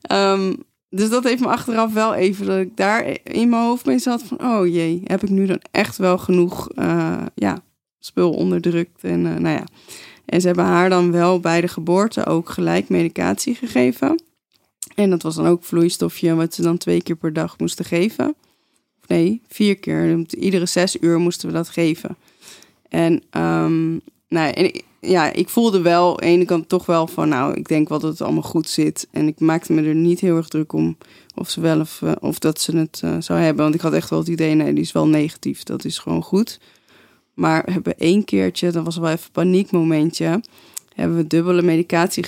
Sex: female